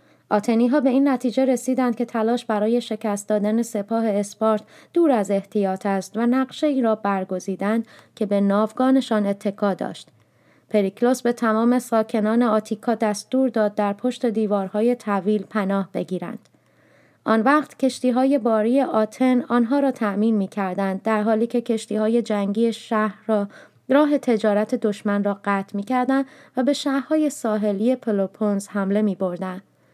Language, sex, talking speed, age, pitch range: Persian, female, 145 wpm, 20-39, 205-245 Hz